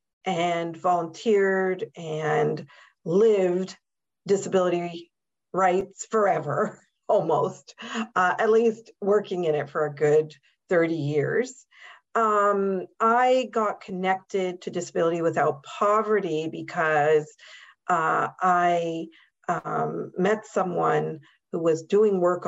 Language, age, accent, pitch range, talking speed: English, 50-69, American, 160-195 Hz, 100 wpm